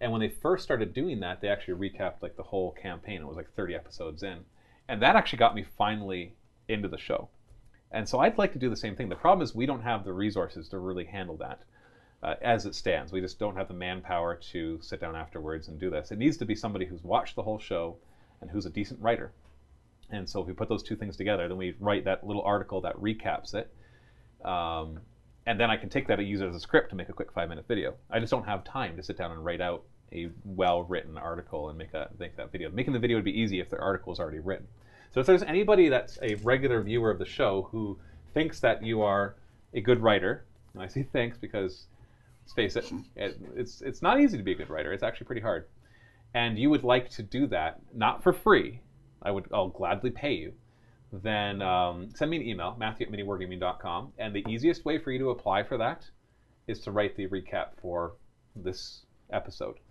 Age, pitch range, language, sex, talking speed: 30-49, 95-120 Hz, English, male, 235 wpm